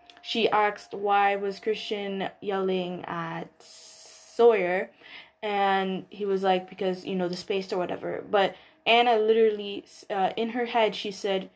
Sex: female